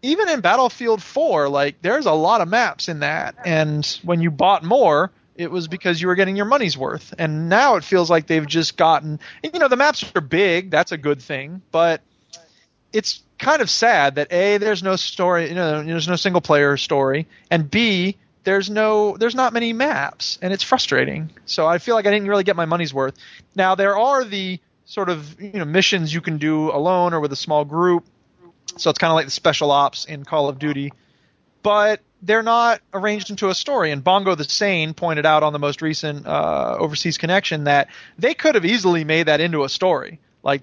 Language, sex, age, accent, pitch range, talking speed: English, male, 20-39, American, 150-195 Hz, 215 wpm